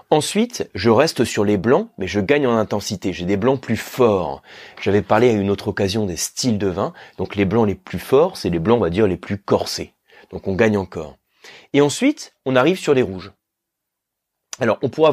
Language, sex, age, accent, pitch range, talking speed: French, male, 30-49, French, 100-150 Hz, 220 wpm